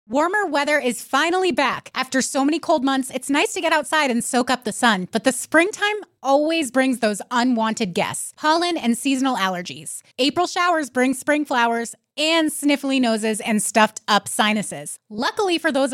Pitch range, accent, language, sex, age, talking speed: 220-280 Hz, American, English, female, 30-49, 175 wpm